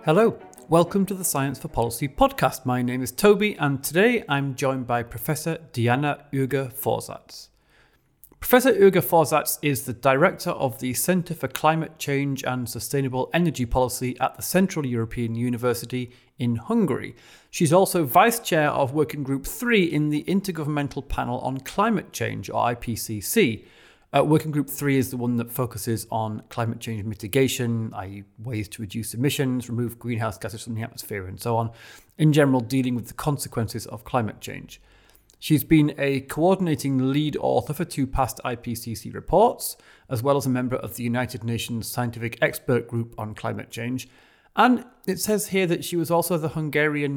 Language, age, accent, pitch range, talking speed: English, 30-49, British, 115-150 Hz, 170 wpm